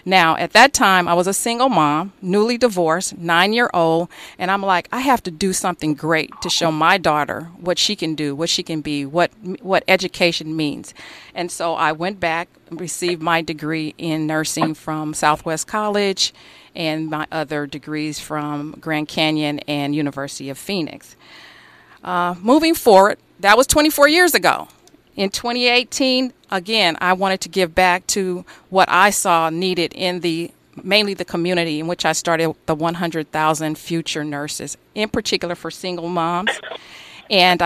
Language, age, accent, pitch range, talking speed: English, 40-59, American, 160-190 Hz, 165 wpm